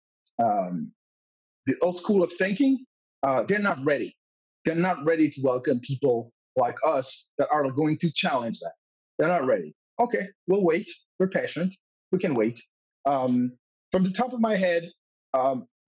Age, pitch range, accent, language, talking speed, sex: 30-49, 130-180 Hz, American, English, 165 wpm, male